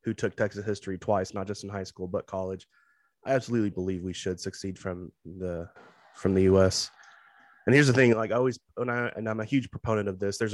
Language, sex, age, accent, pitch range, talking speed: English, male, 20-39, American, 95-105 Hz, 220 wpm